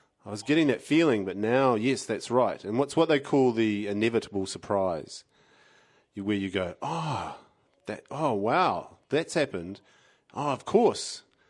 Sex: male